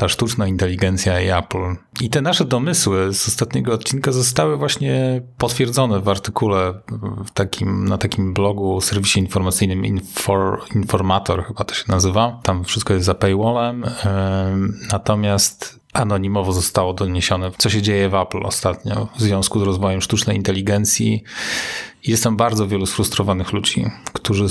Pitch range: 95-110 Hz